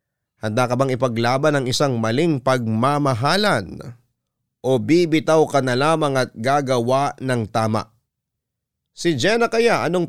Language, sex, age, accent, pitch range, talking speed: Filipino, male, 30-49, native, 120-145 Hz, 125 wpm